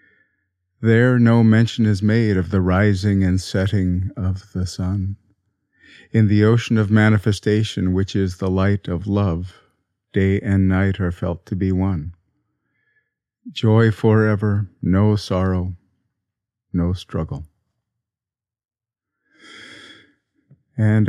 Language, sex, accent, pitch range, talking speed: English, male, American, 95-110 Hz, 110 wpm